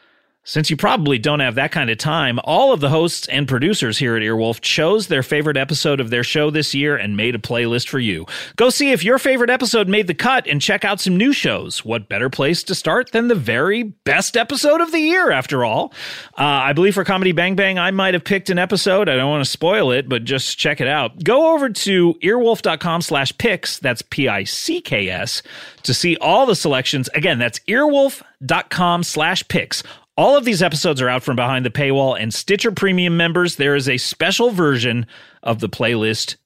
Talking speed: 210 wpm